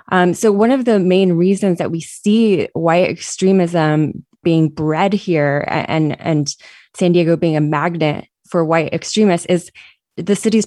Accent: American